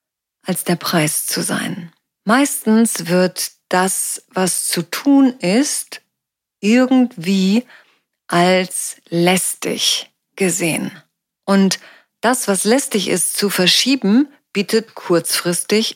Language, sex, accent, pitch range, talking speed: German, female, German, 180-245 Hz, 95 wpm